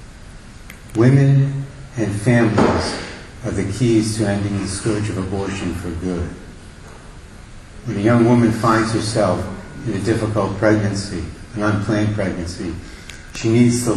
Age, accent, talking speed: 70-89, American, 130 wpm